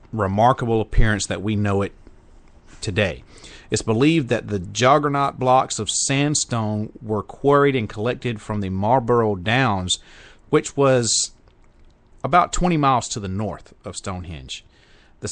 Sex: male